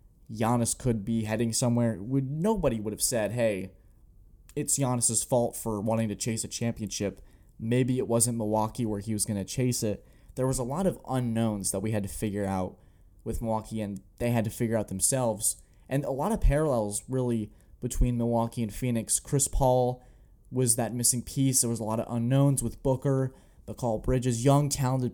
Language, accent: English, American